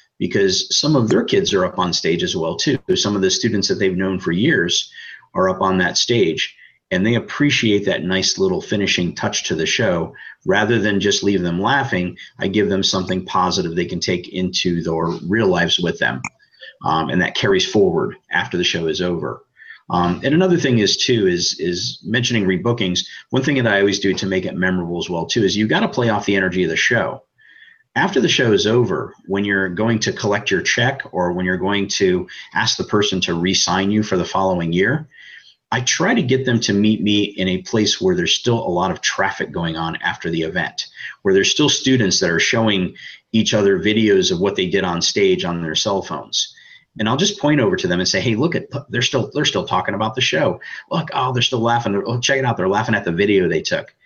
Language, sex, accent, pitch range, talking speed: English, male, American, 95-125 Hz, 230 wpm